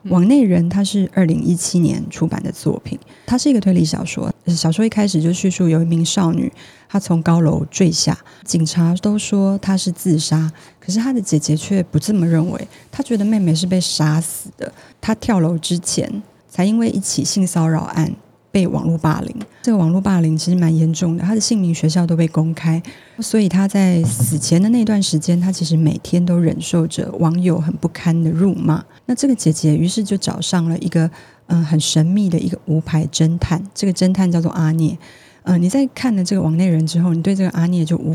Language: Chinese